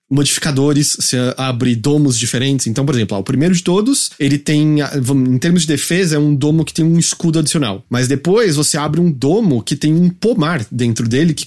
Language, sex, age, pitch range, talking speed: English, male, 20-39, 130-165 Hz, 205 wpm